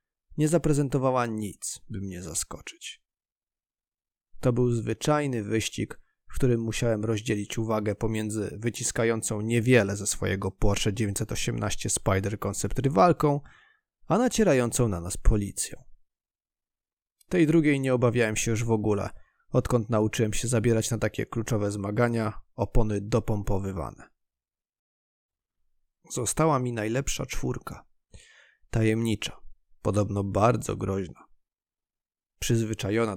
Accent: native